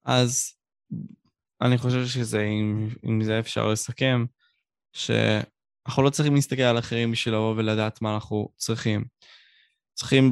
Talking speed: 130 wpm